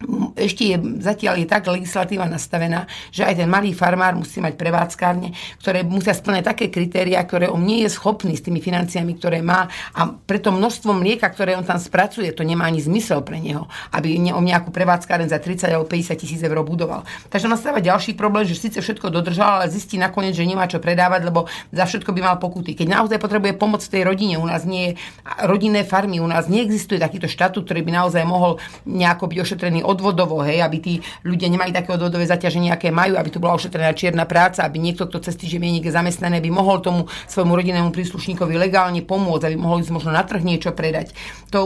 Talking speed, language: 205 wpm, Slovak